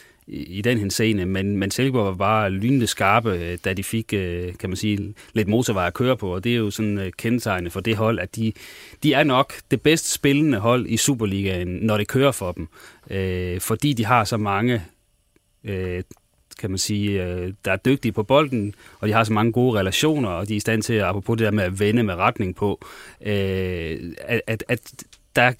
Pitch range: 95-115 Hz